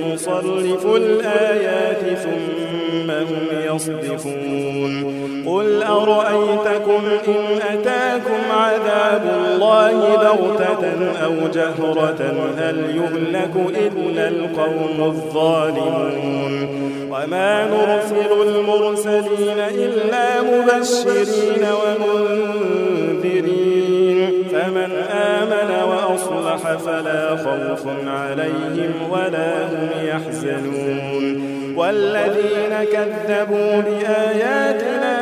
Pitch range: 160-210 Hz